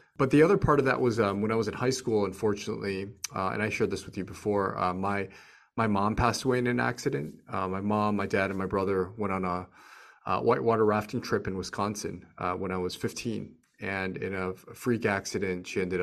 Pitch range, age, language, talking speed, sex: 95-115 Hz, 30-49, English, 230 wpm, male